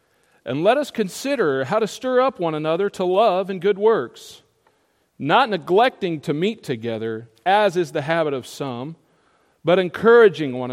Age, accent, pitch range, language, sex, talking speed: 40-59, American, 120-160 Hz, English, male, 160 wpm